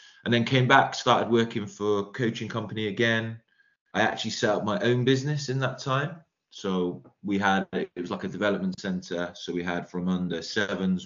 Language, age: English, 20-39